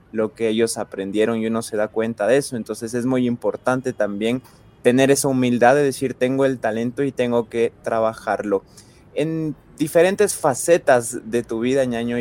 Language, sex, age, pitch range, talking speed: Spanish, male, 20-39, 115-130 Hz, 170 wpm